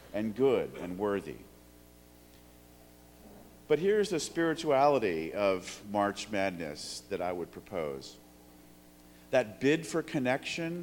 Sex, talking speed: male, 105 wpm